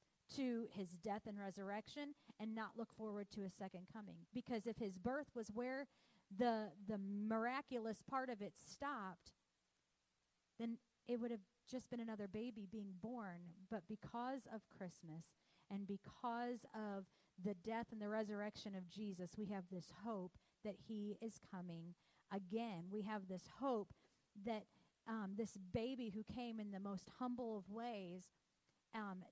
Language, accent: English, American